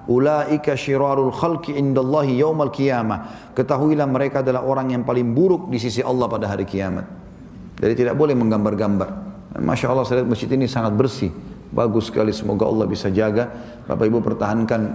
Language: English